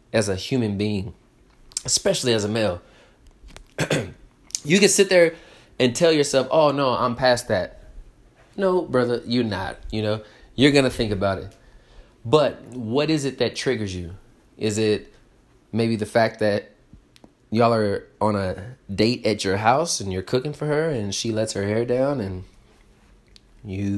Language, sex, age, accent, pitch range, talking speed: English, male, 20-39, American, 105-130 Hz, 165 wpm